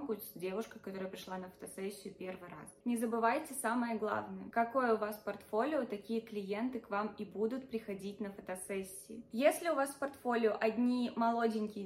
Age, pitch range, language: 20-39, 200-235 Hz, Russian